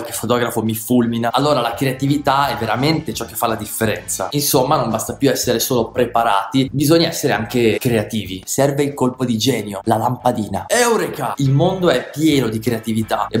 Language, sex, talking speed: Italian, male, 180 wpm